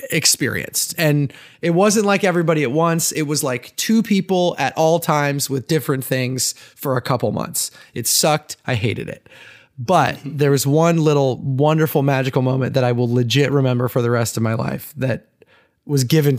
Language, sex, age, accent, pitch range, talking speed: English, male, 20-39, American, 130-160 Hz, 185 wpm